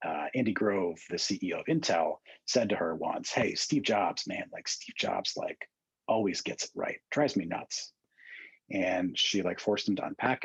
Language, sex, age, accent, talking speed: English, male, 30-49, American, 190 wpm